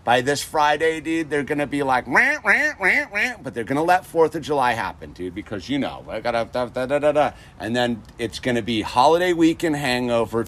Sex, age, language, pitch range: male, 50-69, English, 110-150 Hz